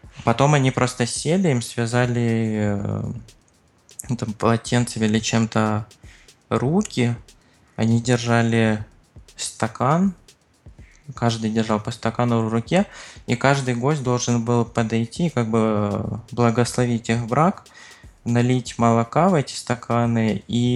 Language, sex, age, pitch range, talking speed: Russian, male, 20-39, 110-130 Hz, 110 wpm